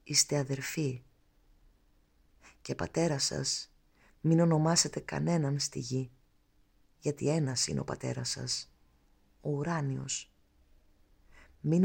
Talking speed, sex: 95 wpm, female